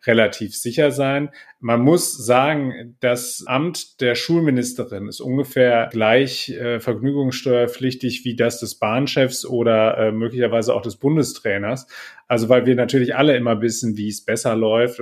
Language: German